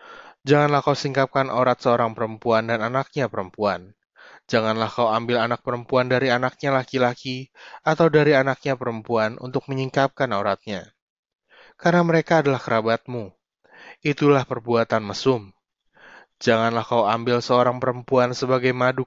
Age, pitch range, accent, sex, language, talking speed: 20-39, 115-130 Hz, native, male, Indonesian, 120 wpm